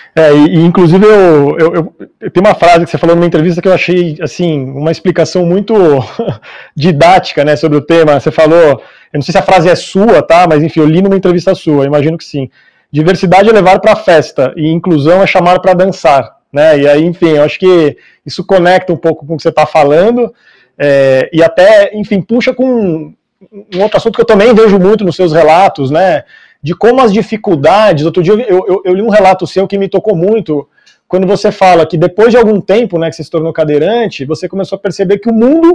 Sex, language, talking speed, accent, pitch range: male, Portuguese, 230 wpm, Brazilian, 160-215 Hz